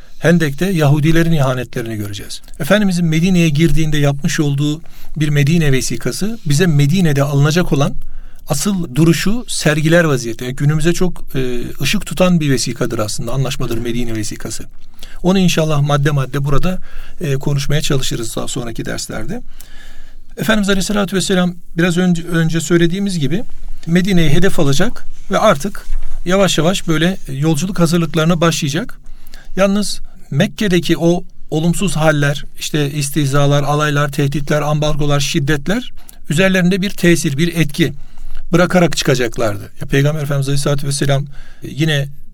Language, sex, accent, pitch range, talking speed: Turkish, male, native, 140-175 Hz, 120 wpm